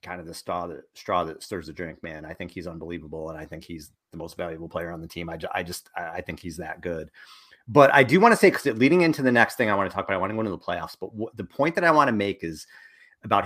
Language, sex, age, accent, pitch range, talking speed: English, male, 30-49, American, 95-135 Hz, 305 wpm